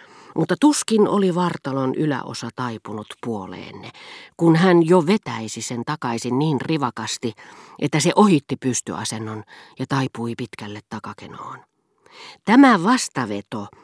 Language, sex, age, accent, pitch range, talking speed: Finnish, female, 40-59, native, 115-150 Hz, 110 wpm